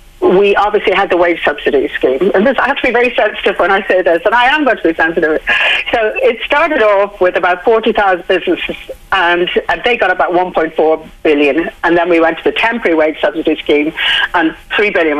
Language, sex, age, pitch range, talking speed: English, female, 50-69, 170-225 Hz, 215 wpm